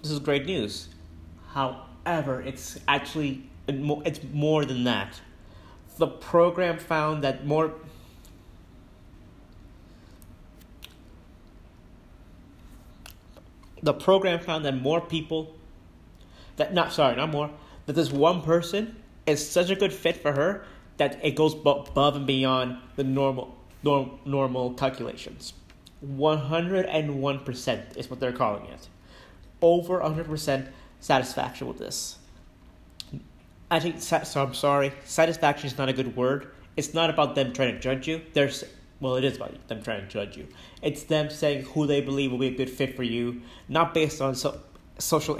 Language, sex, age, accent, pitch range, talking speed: English, male, 30-49, American, 90-150 Hz, 145 wpm